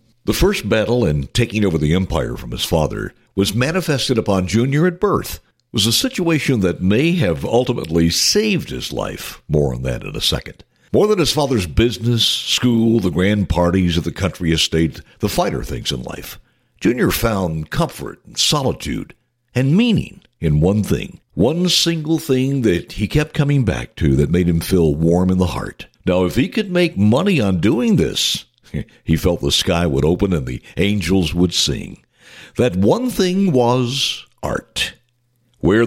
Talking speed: 175 wpm